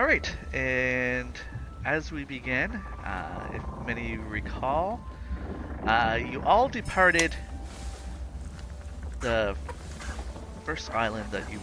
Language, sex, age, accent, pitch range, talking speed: English, male, 30-49, American, 75-100 Hz, 100 wpm